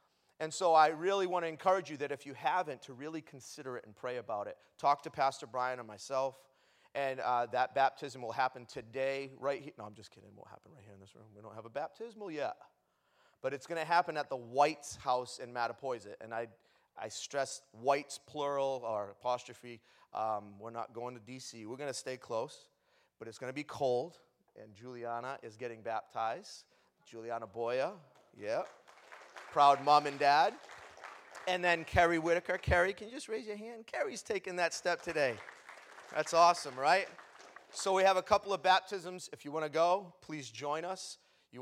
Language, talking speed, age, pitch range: English, 195 wpm, 30-49, 125-190 Hz